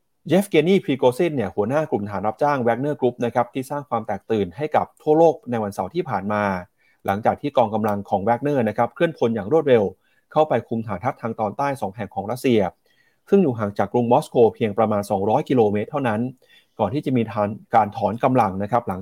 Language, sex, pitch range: Thai, male, 110-150 Hz